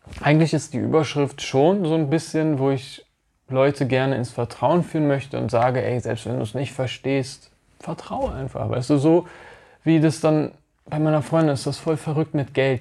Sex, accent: male, German